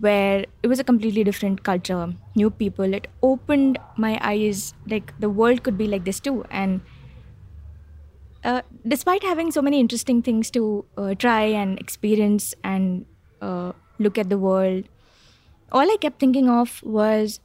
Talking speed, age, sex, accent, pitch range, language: 160 wpm, 20-39, female, Indian, 180-235 Hz, English